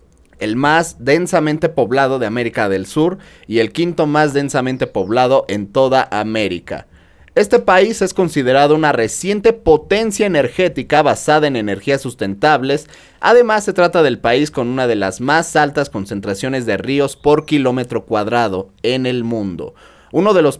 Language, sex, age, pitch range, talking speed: Spanish, male, 30-49, 115-155 Hz, 150 wpm